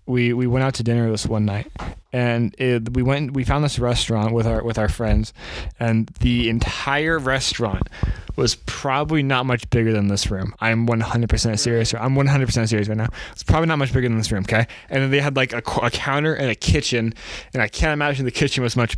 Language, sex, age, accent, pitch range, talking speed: English, male, 20-39, American, 115-145 Hz, 225 wpm